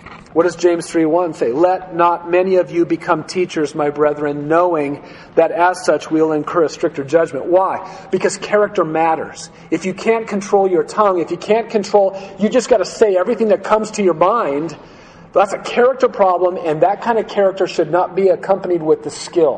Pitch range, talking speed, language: 155-185 Hz, 200 wpm, English